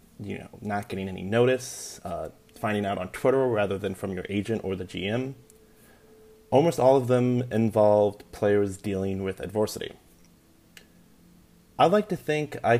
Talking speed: 155 wpm